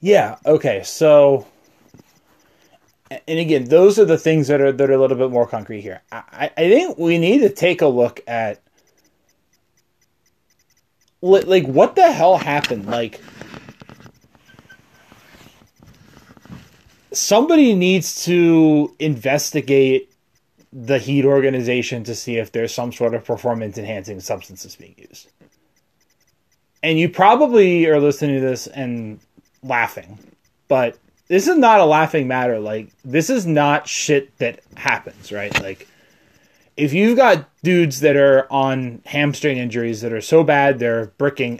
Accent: American